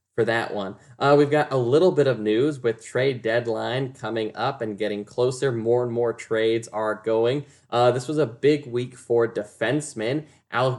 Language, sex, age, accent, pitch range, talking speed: English, male, 10-29, American, 110-125 Hz, 190 wpm